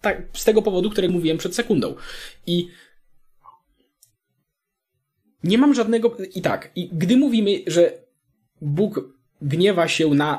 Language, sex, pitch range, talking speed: Polish, male, 140-200 Hz, 125 wpm